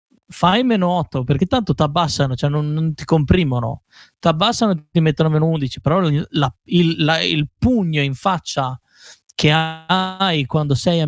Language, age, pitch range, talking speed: Italian, 30-49, 145-180 Hz, 180 wpm